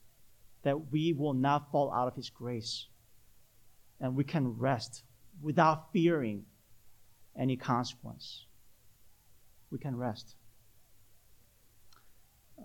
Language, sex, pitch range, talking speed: English, male, 110-155 Hz, 100 wpm